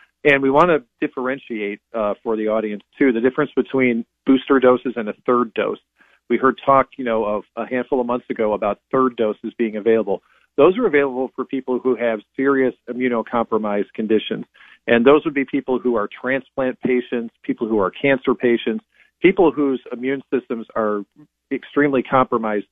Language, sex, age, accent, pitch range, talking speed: English, male, 40-59, American, 110-130 Hz, 175 wpm